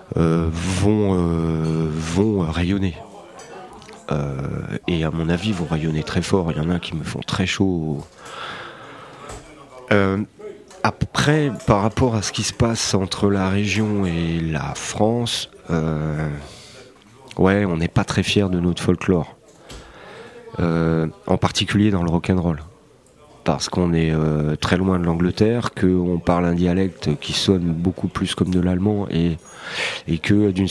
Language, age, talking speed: French, 30-49, 150 wpm